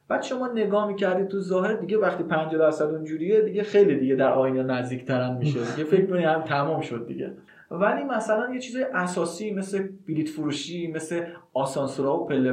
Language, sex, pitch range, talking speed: Persian, male, 135-195 Hz, 180 wpm